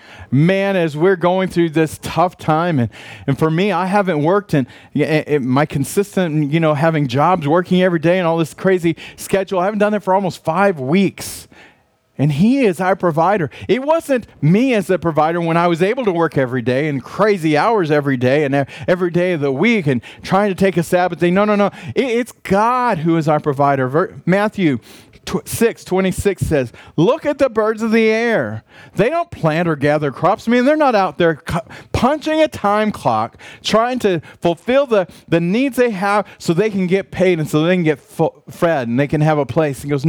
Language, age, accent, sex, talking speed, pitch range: English, 40-59, American, male, 210 wpm, 150-200 Hz